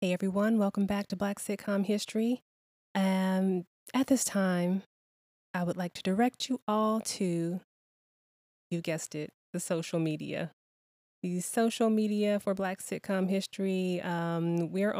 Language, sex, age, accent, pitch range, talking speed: English, female, 20-39, American, 165-195 Hz, 140 wpm